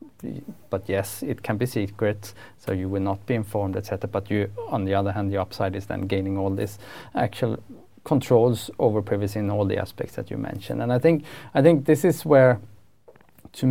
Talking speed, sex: 200 wpm, male